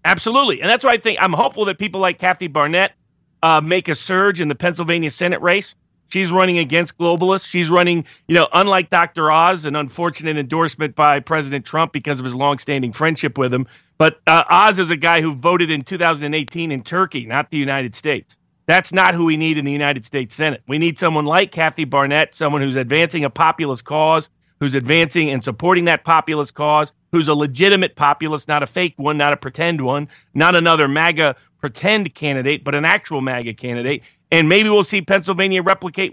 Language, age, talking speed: English, 40-59, 200 wpm